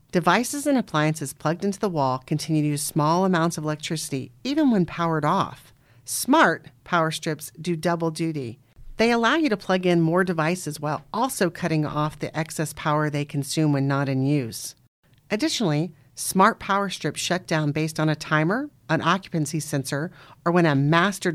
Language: English